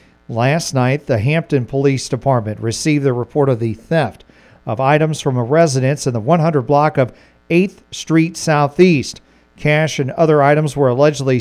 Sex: male